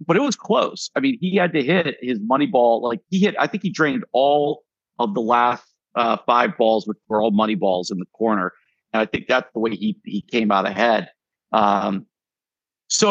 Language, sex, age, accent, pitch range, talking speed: English, male, 50-69, American, 115-155 Hz, 220 wpm